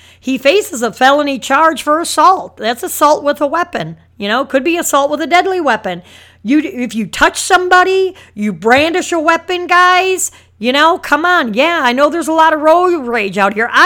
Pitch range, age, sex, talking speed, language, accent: 220-310 Hz, 50-69, female, 205 wpm, English, American